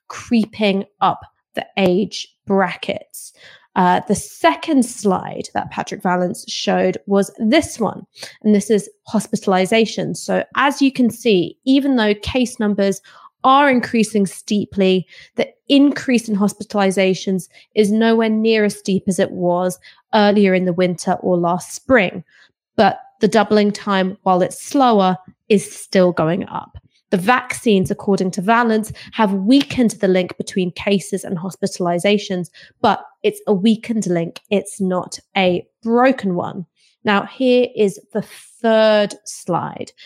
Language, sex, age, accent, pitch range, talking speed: English, female, 20-39, British, 185-220 Hz, 135 wpm